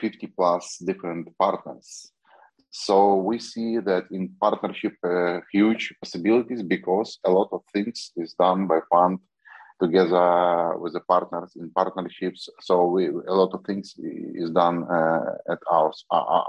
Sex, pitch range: male, 90-100 Hz